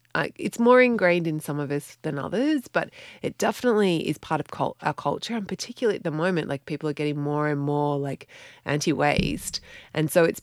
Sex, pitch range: female, 150-195 Hz